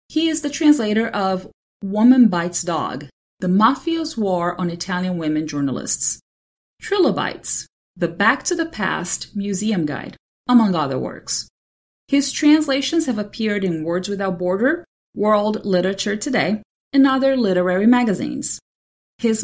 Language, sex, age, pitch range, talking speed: English, female, 30-49, 180-255 Hz, 130 wpm